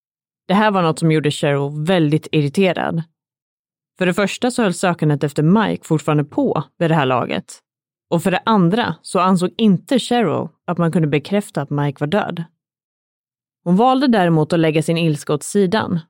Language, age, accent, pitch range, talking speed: Swedish, 30-49, native, 155-205 Hz, 180 wpm